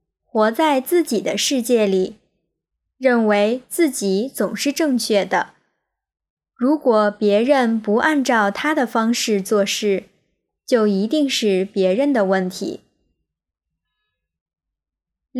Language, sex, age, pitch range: Chinese, male, 20-39, 195-260 Hz